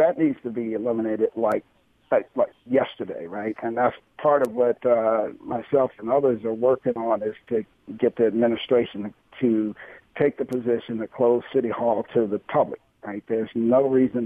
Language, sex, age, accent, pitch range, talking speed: English, male, 60-79, American, 115-155 Hz, 175 wpm